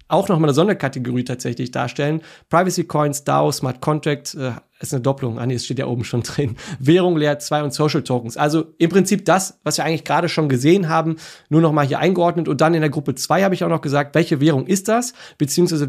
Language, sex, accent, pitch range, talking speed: German, male, German, 140-170 Hz, 225 wpm